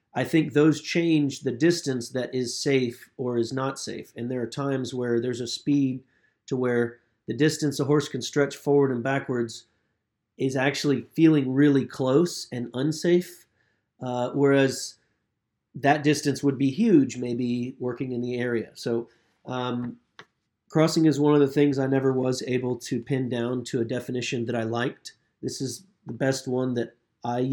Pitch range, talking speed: 120-140 Hz, 170 wpm